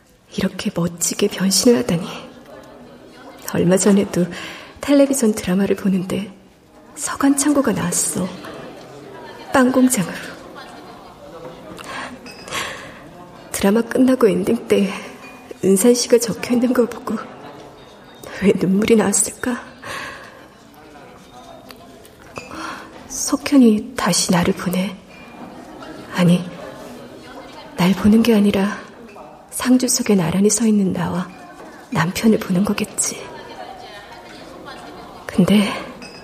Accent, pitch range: native, 195-250 Hz